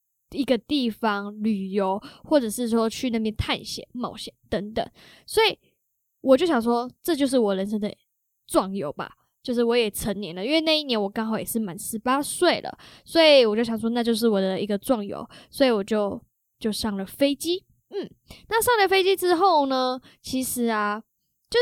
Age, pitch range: 10-29, 215-270 Hz